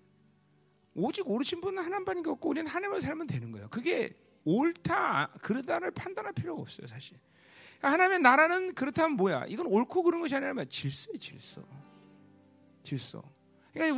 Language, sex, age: Korean, male, 40-59